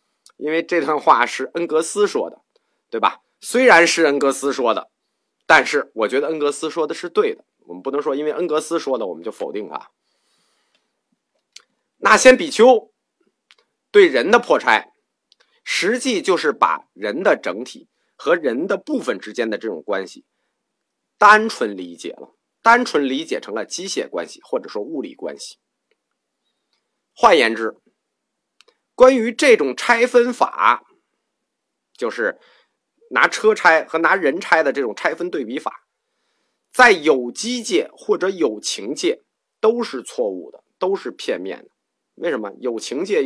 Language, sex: Chinese, male